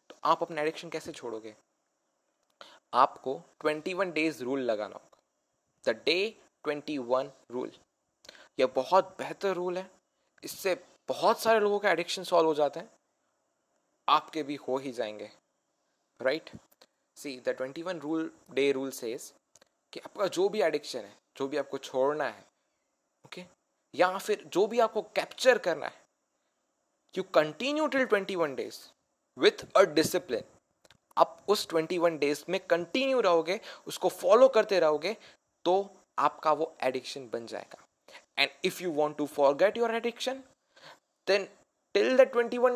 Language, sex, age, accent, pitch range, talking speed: Hindi, male, 20-39, native, 155-230 Hz, 150 wpm